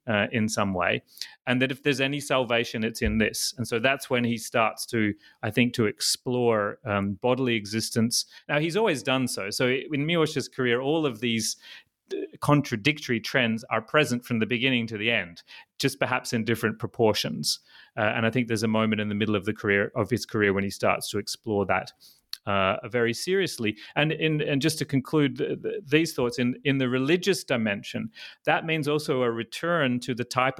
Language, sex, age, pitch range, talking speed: English, male, 30-49, 110-130 Hz, 200 wpm